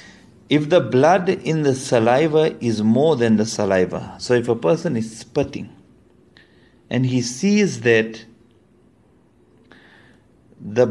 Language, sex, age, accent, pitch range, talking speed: English, male, 50-69, Indian, 110-160 Hz, 120 wpm